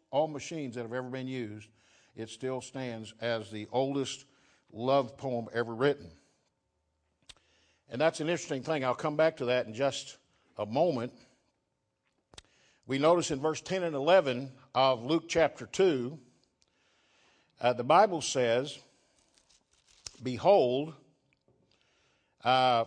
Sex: male